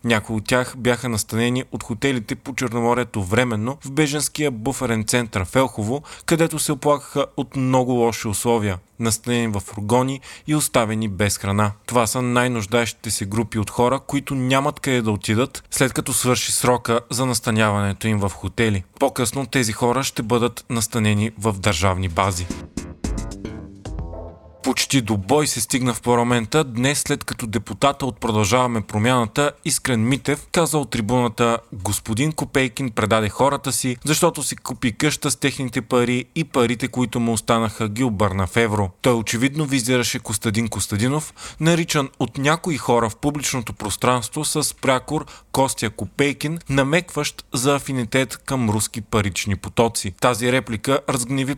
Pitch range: 110-135 Hz